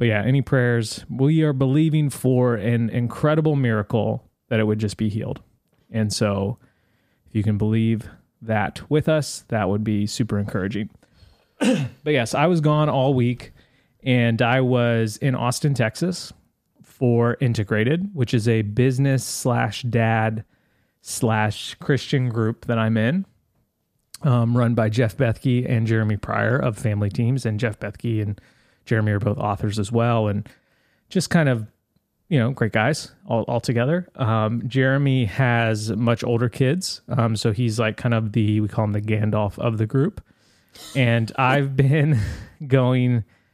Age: 20-39